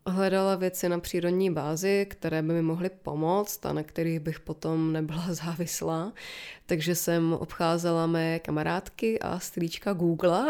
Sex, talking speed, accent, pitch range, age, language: female, 145 wpm, native, 170-220 Hz, 20-39, Czech